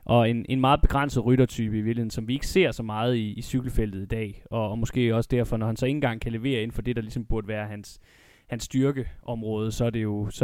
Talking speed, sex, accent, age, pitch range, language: 265 wpm, male, native, 20-39, 110-135 Hz, Danish